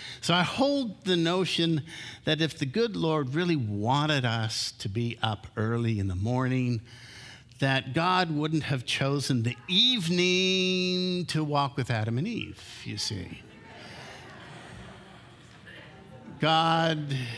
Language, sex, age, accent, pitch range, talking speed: English, male, 50-69, American, 115-150 Hz, 125 wpm